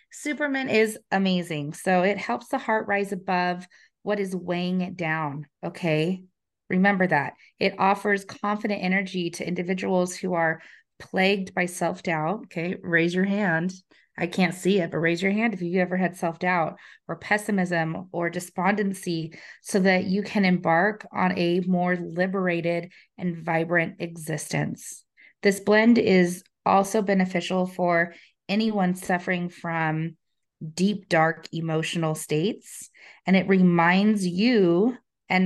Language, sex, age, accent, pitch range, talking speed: English, female, 30-49, American, 175-205 Hz, 135 wpm